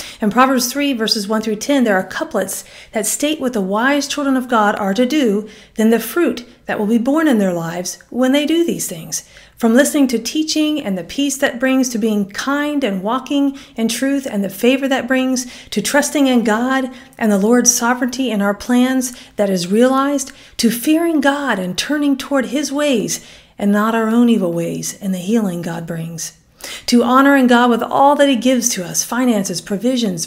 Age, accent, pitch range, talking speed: 40-59, American, 205-270 Hz, 200 wpm